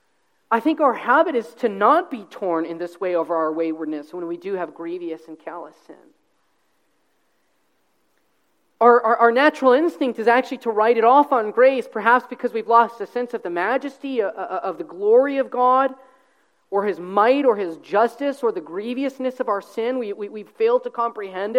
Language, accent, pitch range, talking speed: English, American, 220-280 Hz, 195 wpm